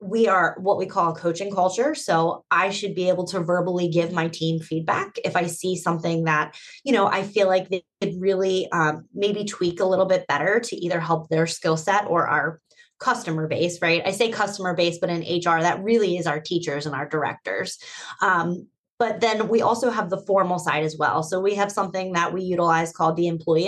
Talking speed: 220 wpm